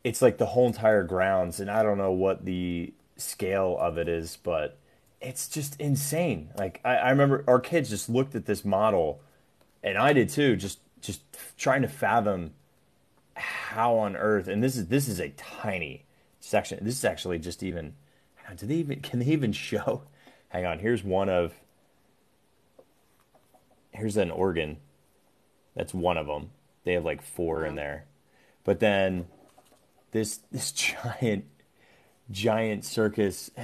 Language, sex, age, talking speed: English, male, 30-49, 160 wpm